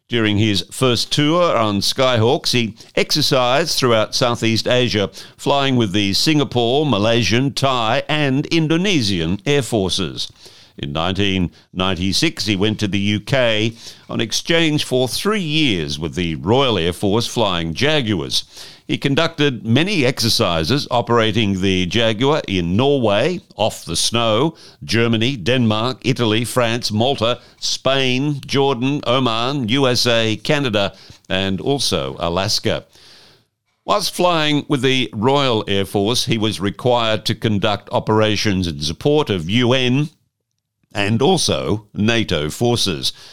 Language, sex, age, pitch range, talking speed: English, male, 60-79, 100-135 Hz, 120 wpm